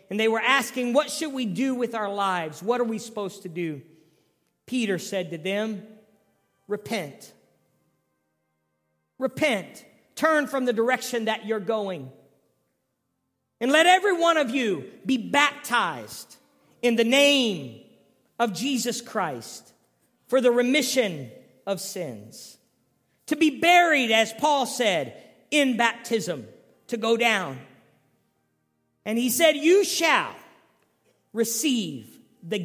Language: English